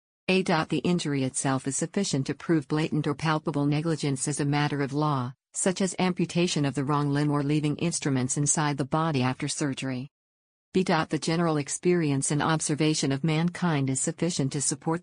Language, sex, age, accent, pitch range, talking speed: English, female, 50-69, American, 140-165 Hz, 175 wpm